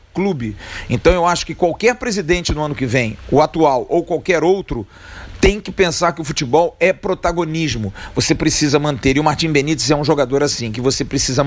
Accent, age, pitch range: Brazilian, 40-59, 130-170 Hz